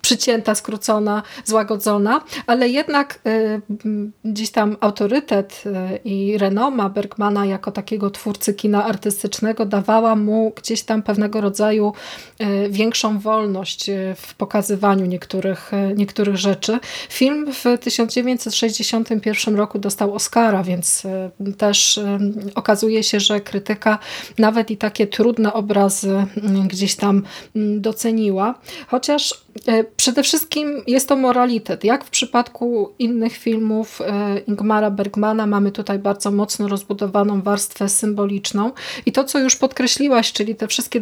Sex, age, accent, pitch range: female, 20-39, native, 205-225 Hz